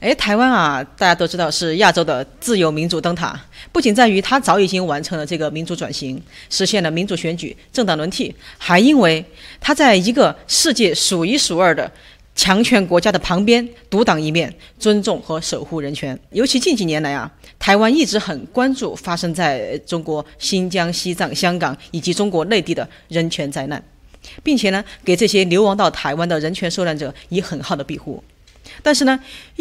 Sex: female